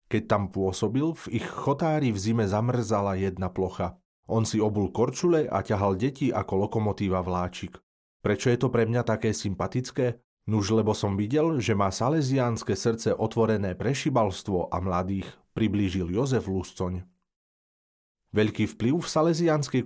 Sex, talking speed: male, 145 wpm